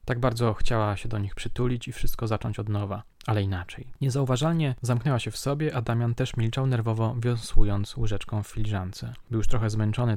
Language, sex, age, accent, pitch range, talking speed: Polish, male, 20-39, native, 105-125 Hz, 190 wpm